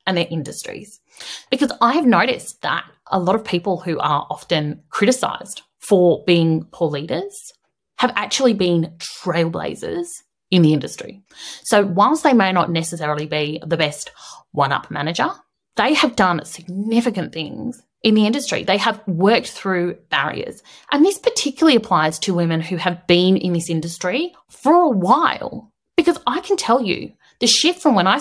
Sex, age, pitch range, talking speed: female, 30-49, 175-275 Hz, 160 wpm